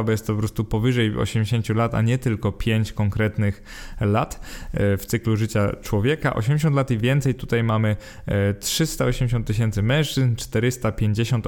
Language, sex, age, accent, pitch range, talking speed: Polish, male, 20-39, native, 110-130 Hz, 145 wpm